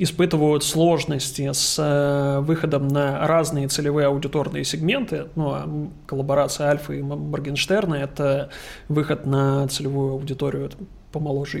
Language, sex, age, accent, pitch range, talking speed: Russian, male, 20-39, native, 140-155 Hz, 115 wpm